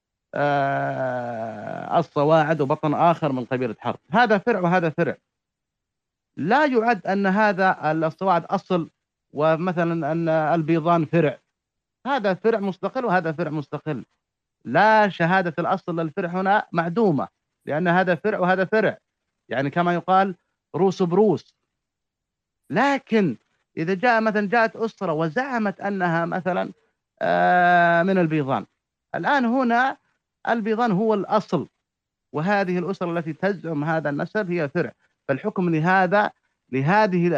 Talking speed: 110 wpm